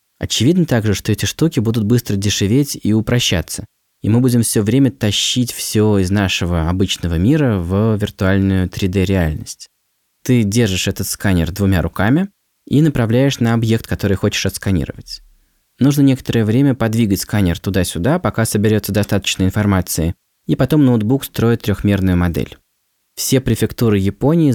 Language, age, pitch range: Russian, 20-39, 95-115 Hz